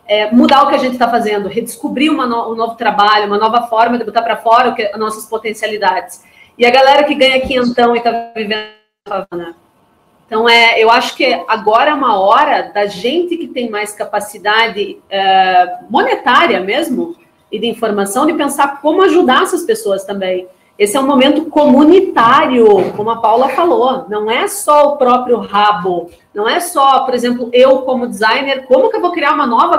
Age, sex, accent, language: 40-59, female, Brazilian, Portuguese